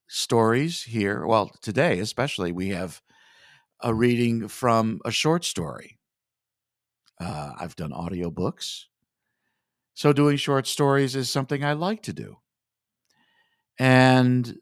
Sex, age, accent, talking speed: male, 50-69, American, 120 wpm